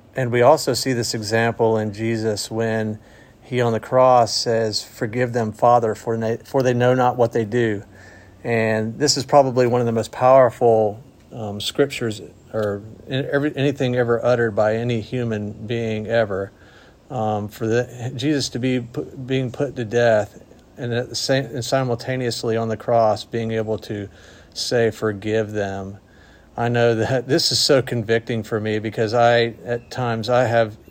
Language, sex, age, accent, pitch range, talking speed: English, male, 40-59, American, 105-125 Hz, 155 wpm